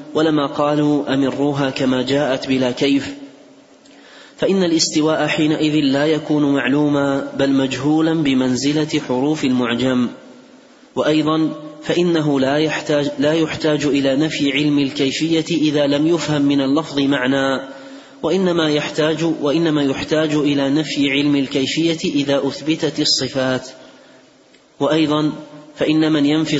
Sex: male